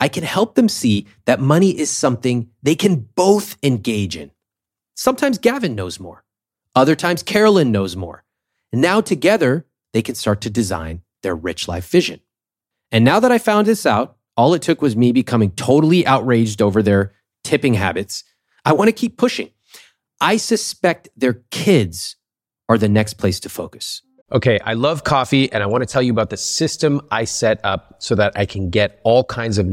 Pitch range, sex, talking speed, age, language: 105-150 Hz, male, 190 wpm, 30-49, English